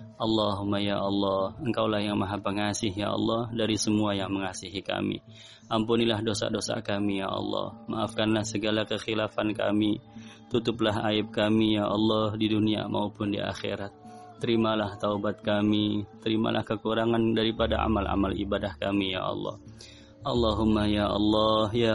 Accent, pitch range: native, 105-115 Hz